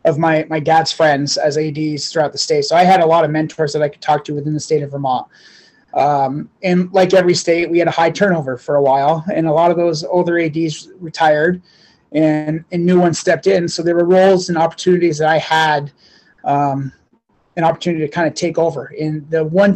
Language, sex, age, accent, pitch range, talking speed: English, male, 30-49, American, 155-180 Hz, 225 wpm